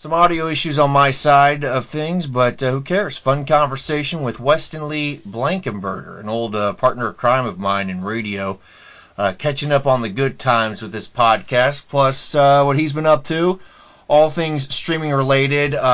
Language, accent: English, American